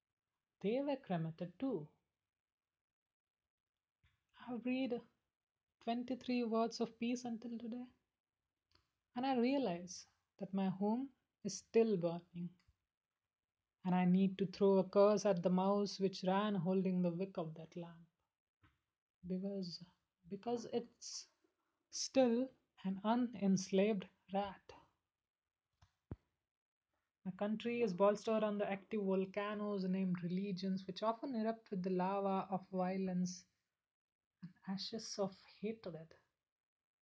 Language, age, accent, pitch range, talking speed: English, 20-39, Indian, 180-230 Hz, 110 wpm